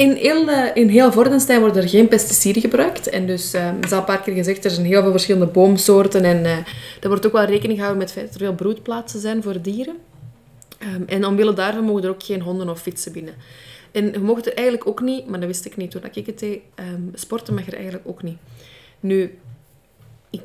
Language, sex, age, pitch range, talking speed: Dutch, female, 20-39, 175-215 Hz, 240 wpm